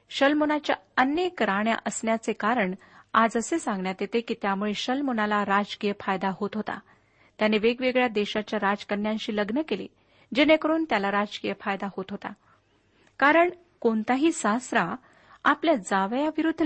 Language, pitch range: Marathi, 200-260 Hz